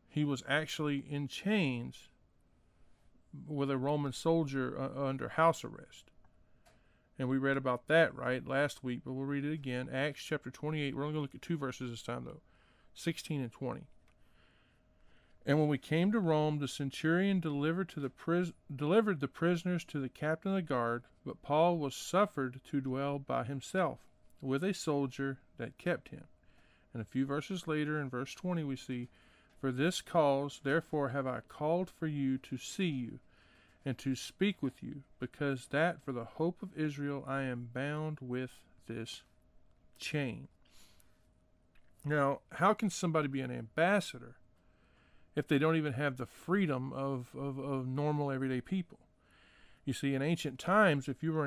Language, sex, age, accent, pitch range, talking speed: English, male, 40-59, American, 130-155 Hz, 170 wpm